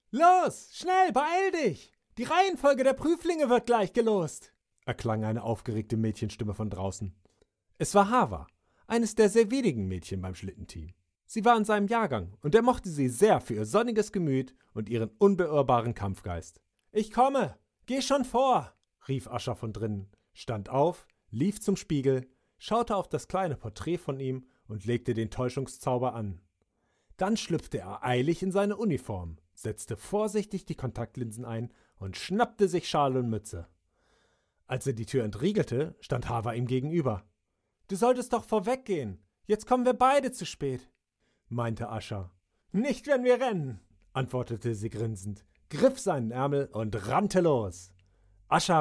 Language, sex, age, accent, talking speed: German, male, 40-59, German, 150 wpm